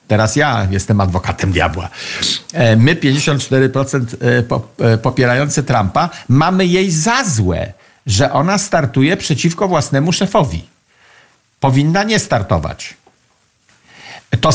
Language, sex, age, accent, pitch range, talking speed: Polish, male, 50-69, native, 125-175 Hz, 95 wpm